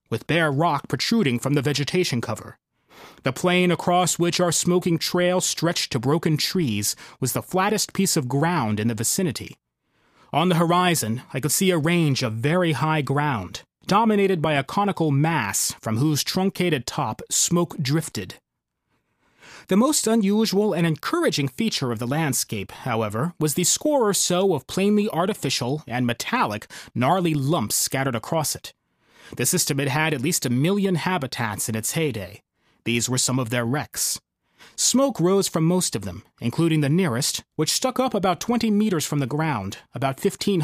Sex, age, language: male, 30-49, English